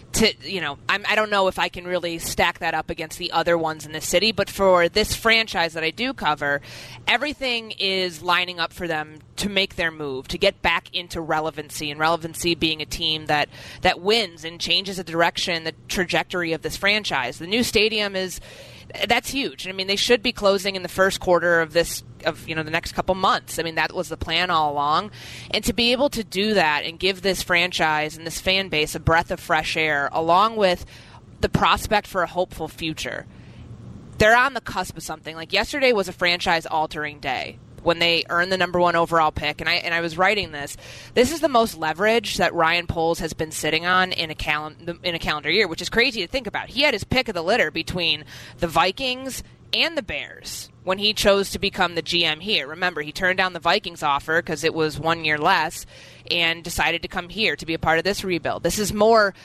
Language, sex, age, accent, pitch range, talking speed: English, female, 20-39, American, 160-195 Hz, 225 wpm